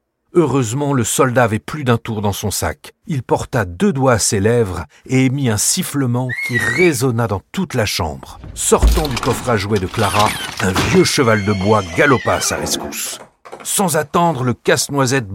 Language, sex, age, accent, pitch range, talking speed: French, male, 60-79, French, 105-135 Hz, 185 wpm